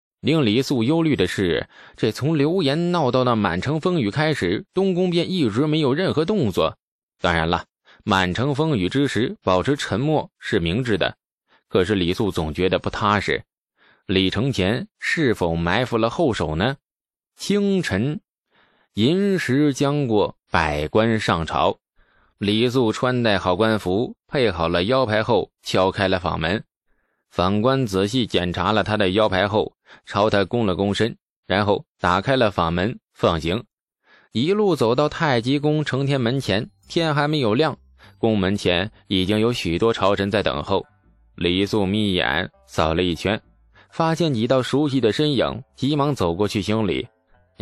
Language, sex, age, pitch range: Chinese, male, 20-39, 95-135 Hz